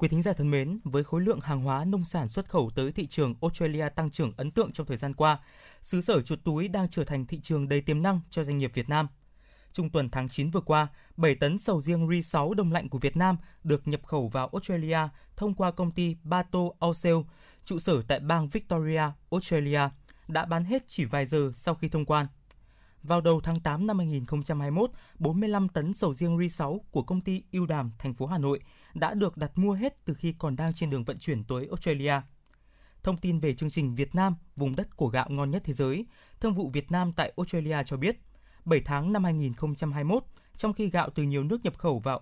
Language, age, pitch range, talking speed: Vietnamese, 20-39, 145-180 Hz, 225 wpm